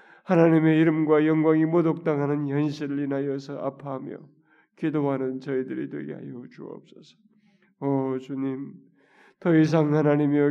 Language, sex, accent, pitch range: Korean, male, native, 145-185 Hz